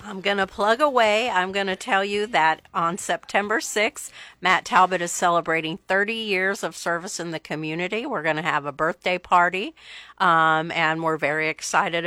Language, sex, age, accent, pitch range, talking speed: English, female, 50-69, American, 160-200 Hz, 185 wpm